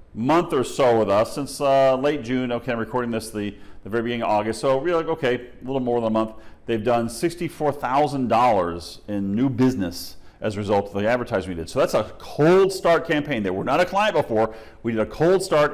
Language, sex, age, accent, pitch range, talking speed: English, male, 40-59, American, 110-140 Hz, 230 wpm